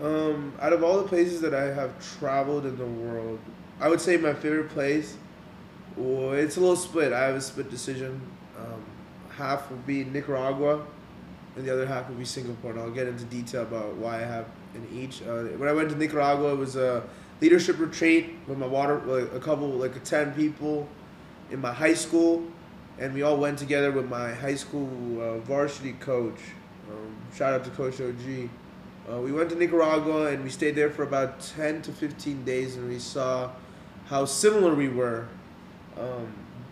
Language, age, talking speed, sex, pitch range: English, 20-39, 195 wpm, male, 130-150 Hz